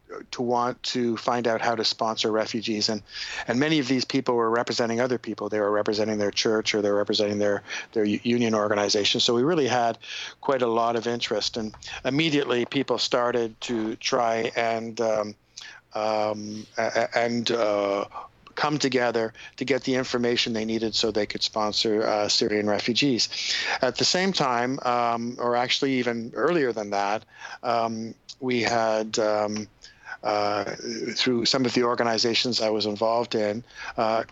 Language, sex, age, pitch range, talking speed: English, male, 50-69, 110-125 Hz, 160 wpm